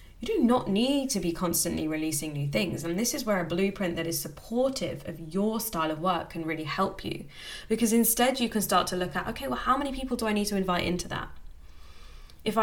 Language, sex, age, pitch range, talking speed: English, female, 10-29, 165-215 Hz, 235 wpm